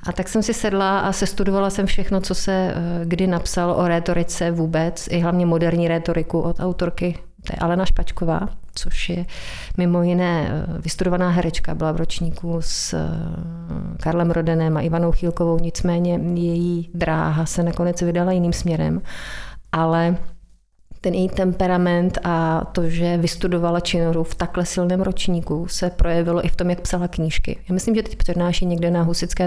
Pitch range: 165-185 Hz